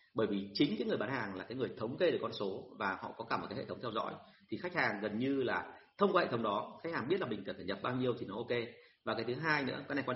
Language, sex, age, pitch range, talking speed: Vietnamese, male, 30-49, 125-170 Hz, 335 wpm